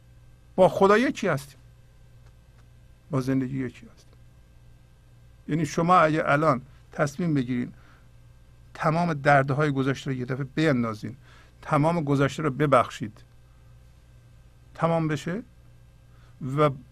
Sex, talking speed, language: male, 105 wpm, Persian